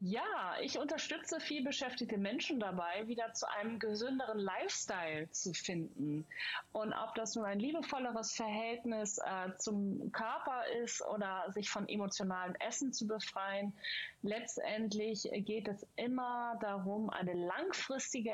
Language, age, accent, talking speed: German, 30-49, German, 125 wpm